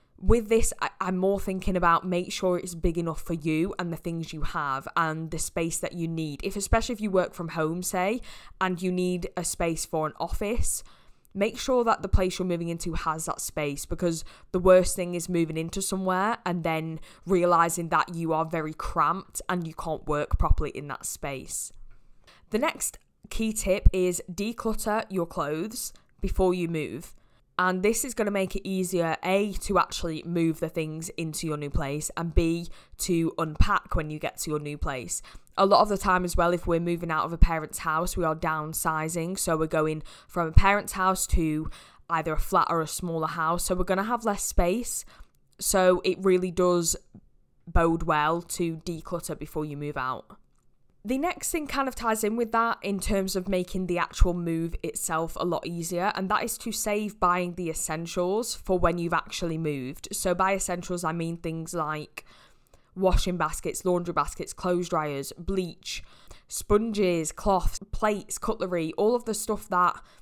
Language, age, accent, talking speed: English, 20-39, British, 190 wpm